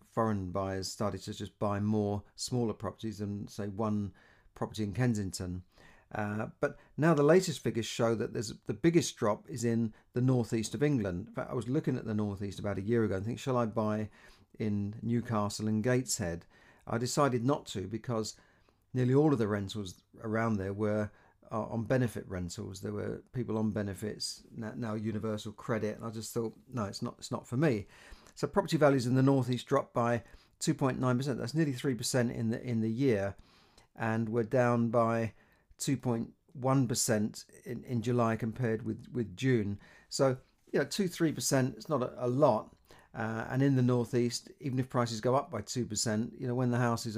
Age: 40-59